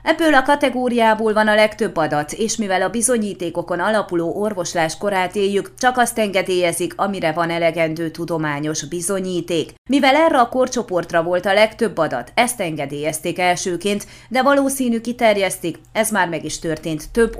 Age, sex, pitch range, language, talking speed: 30-49, female, 170-225 Hz, Hungarian, 150 wpm